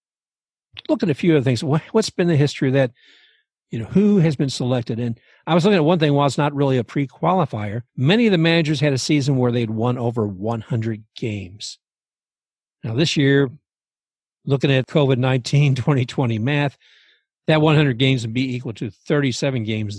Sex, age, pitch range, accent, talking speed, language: male, 60-79, 115-155 Hz, American, 190 wpm, English